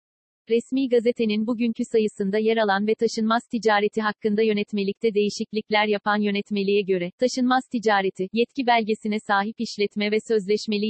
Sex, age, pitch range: female, 40-59, 200-230 Hz